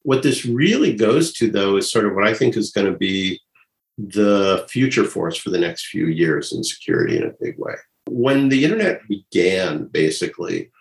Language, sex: English, male